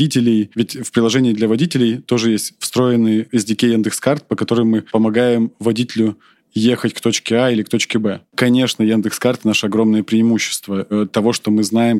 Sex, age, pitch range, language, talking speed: male, 20-39, 110-125 Hz, Russian, 170 wpm